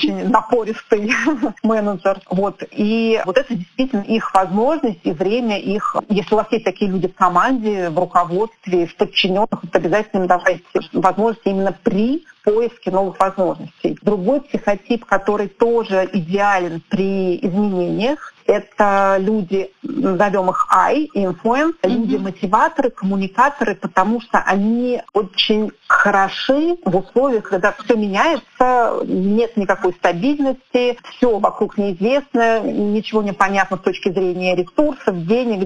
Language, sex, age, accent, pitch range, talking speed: Russian, female, 40-59, native, 195-235 Hz, 125 wpm